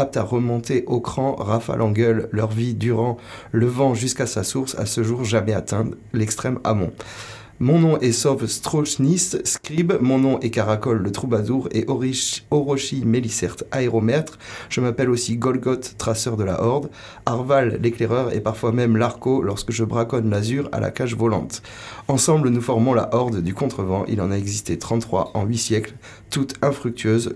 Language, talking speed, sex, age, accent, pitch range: French, 180 wpm, male, 30-49, French, 110-135 Hz